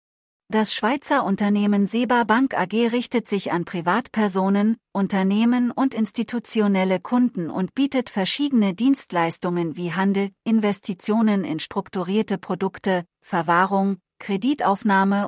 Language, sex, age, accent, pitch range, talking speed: English, female, 40-59, German, 175-230 Hz, 100 wpm